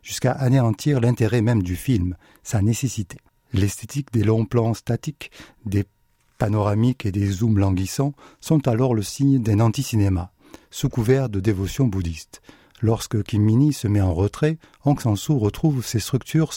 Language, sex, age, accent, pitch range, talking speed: French, male, 50-69, French, 100-130 Hz, 150 wpm